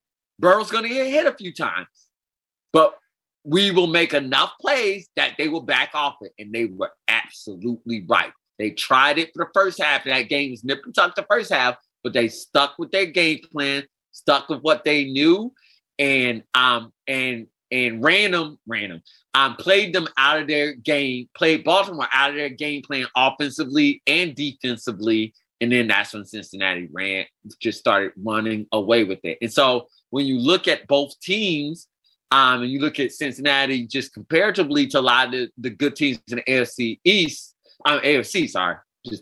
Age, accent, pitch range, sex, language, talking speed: 30-49, American, 120-160 Hz, male, English, 185 wpm